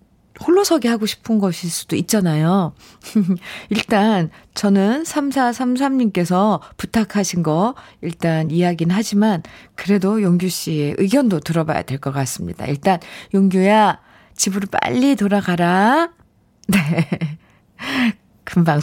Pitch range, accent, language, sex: 175-250 Hz, native, Korean, female